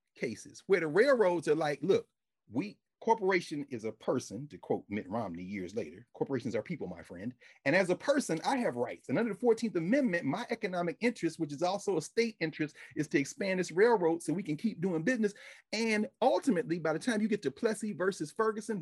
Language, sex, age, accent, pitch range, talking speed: English, male, 40-59, American, 175-290 Hz, 210 wpm